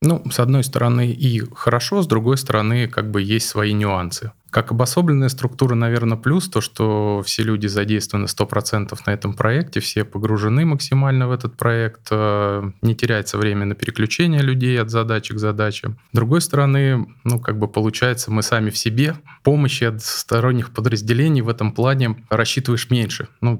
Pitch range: 110-125 Hz